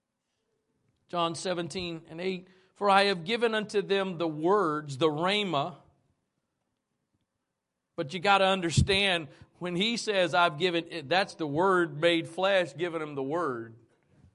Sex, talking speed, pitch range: male, 140 wpm, 190-245 Hz